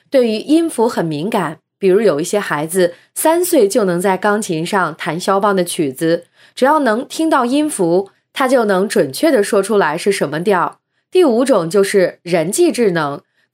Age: 20-39